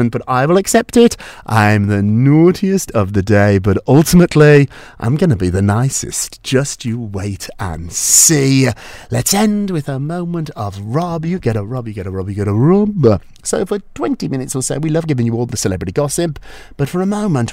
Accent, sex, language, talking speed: British, male, English, 210 wpm